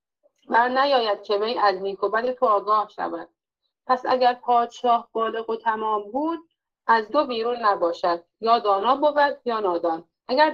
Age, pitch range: 30-49, 200-260 Hz